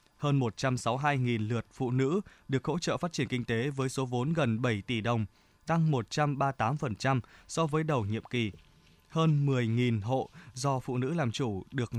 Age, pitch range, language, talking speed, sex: 20-39, 115-145 Hz, Vietnamese, 175 wpm, male